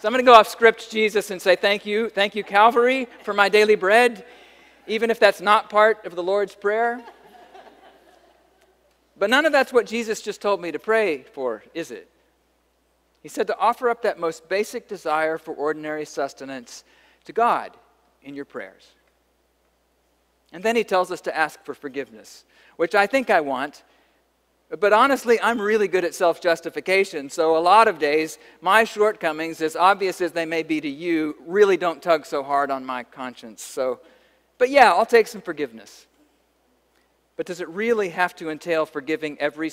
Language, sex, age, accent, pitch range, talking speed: English, male, 40-59, American, 145-220 Hz, 180 wpm